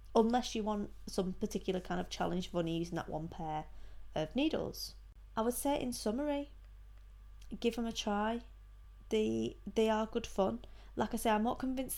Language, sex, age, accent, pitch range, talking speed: English, female, 20-39, British, 180-220 Hz, 175 wpm